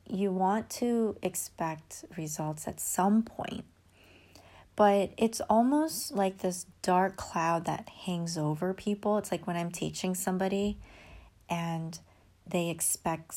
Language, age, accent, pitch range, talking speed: English, 30-49, American, 150-185 Hz, 125 wpm